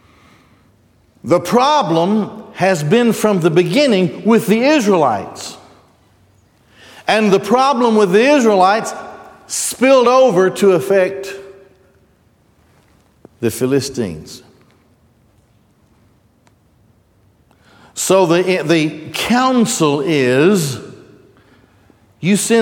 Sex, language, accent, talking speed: male, English, American, 75 wpm